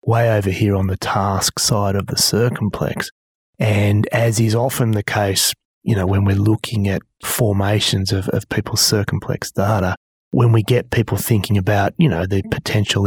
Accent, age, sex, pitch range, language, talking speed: Australian, 30-49, male, 100-125 Hz, English, 175 wpm